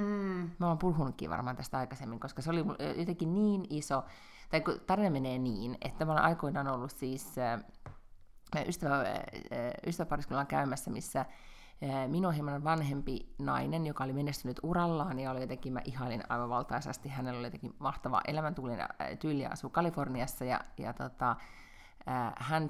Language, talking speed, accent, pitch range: Finnish, 135 wpm, native, 125-165 Hz